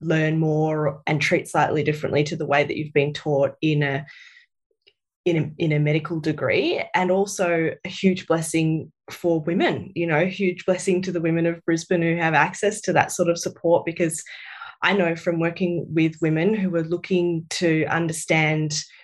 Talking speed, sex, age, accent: 180 wpm, female, 20-39, Australian